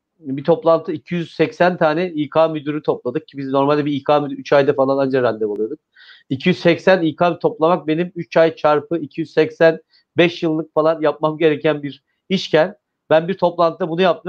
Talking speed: 160 wpm